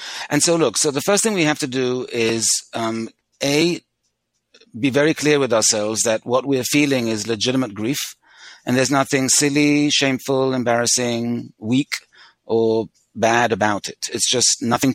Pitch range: 115-145 Hz